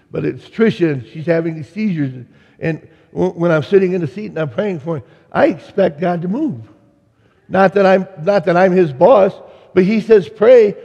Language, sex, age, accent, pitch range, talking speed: English, male, 60-79, American, 160-205 Hz, 205 wpm